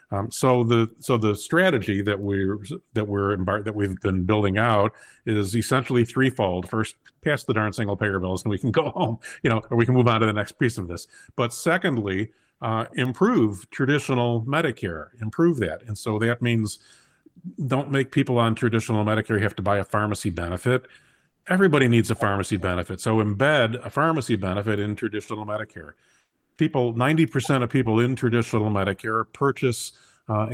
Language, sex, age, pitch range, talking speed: English, male, 50-69, 105-125 Hz, 175 wpm